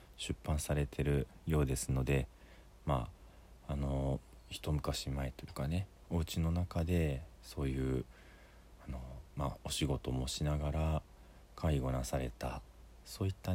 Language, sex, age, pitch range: Japanese, male, 40-59, 65-85 Hz